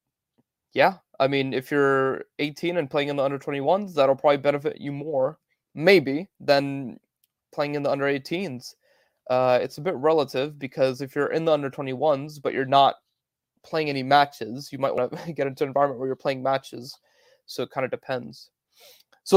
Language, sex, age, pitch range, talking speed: English, male, 20-39, 130-155 Hz, 175 wpm